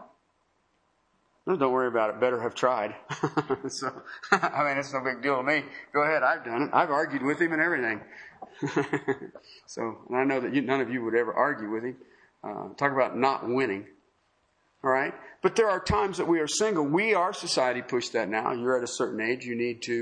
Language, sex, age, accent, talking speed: English, male, 50-69, American, 210 wpm